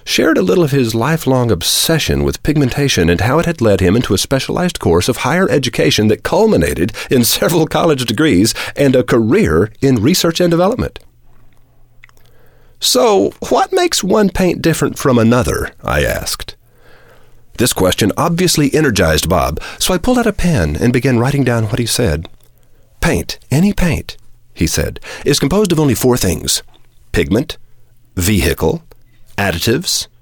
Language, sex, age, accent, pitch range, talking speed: English, male, 40-59, American, 110-140 Hz, 155 wpm